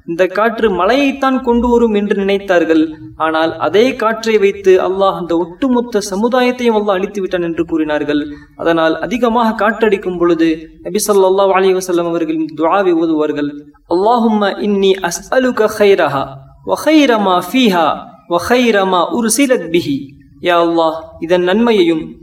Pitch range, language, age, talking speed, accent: 170-235 Hz, Tamil, 20-39, 65 wpm, native